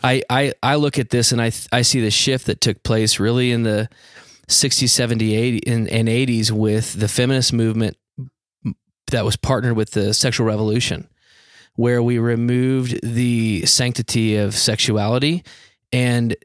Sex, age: male, 20-39